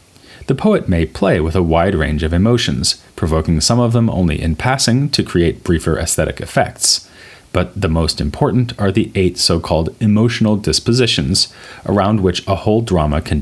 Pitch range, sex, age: 80-110 Hz, male, 30-49